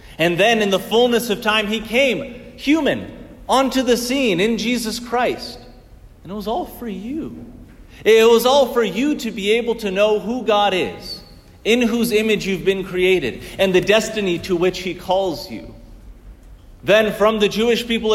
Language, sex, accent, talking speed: English, male, American, 180 wpm